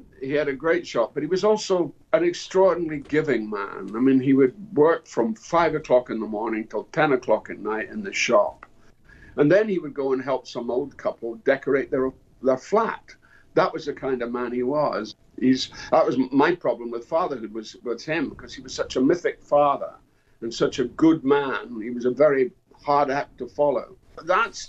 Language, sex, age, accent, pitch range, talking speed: English, male, 60-79, British, 125-190 Hz, 205 wpm